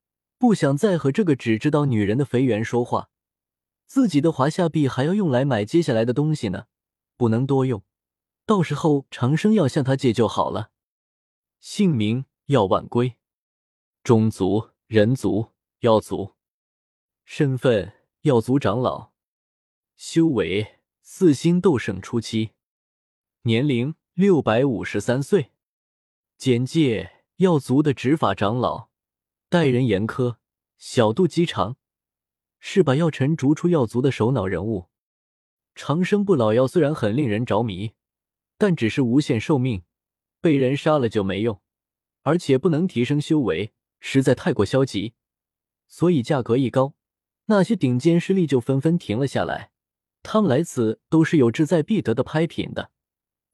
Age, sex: 20-39, male